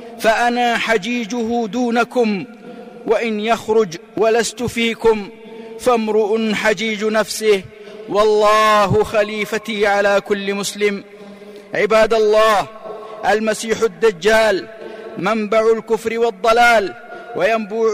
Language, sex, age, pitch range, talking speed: Arabic, male, 50-69, 215-230 Hz, 75 wpm